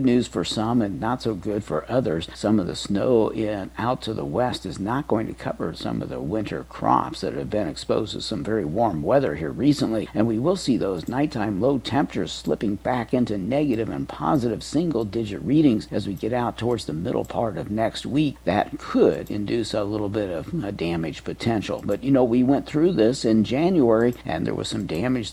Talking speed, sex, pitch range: 215 wpm, male, 105-130 Hz